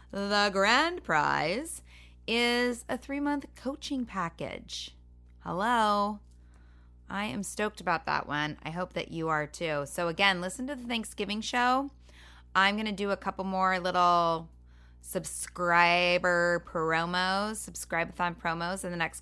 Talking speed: 135 wpm